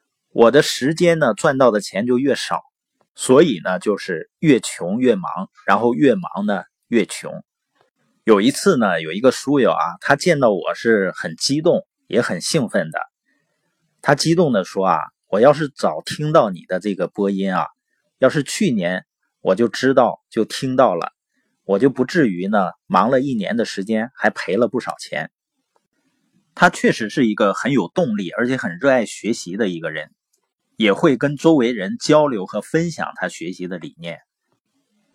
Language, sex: Chinese, male